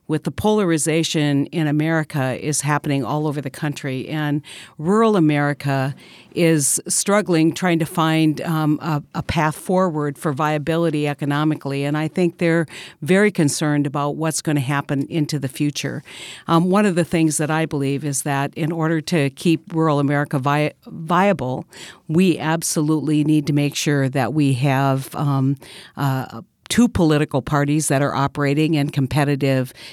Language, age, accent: English, 50-69, American